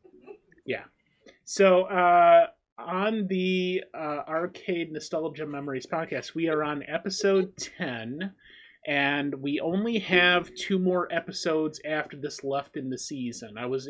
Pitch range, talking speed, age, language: 130-165 Hz, 130 wpm, 30-49, English